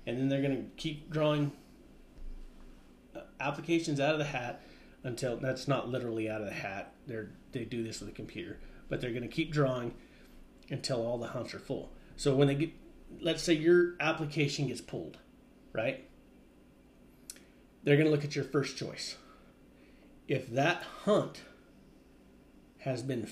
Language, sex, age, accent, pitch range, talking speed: English, male, 30-49, American, 120-150 Hz, 160 wpm